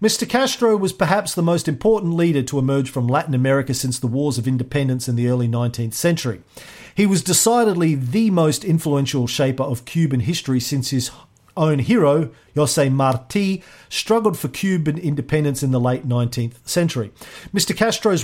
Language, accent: English, Australian